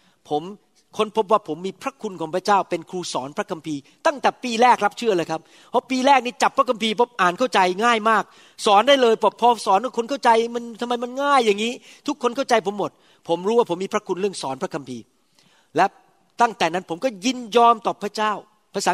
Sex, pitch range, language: male, 185-245 Hz, Thai